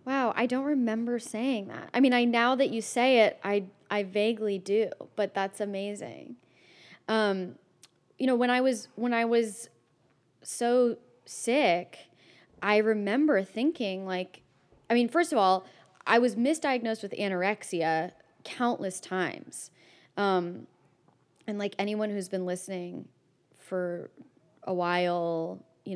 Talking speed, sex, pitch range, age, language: 135 wpm, female, 175-220 Hz, 20-39, English